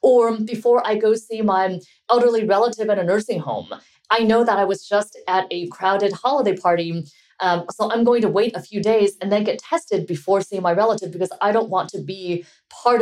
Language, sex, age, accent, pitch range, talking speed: English, female, 30-49, American, 175-230 Hz, 215 wpm